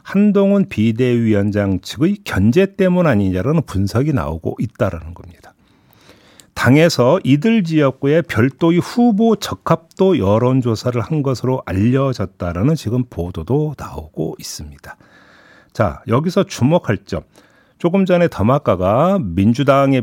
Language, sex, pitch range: Korean, male, 95-160 Hz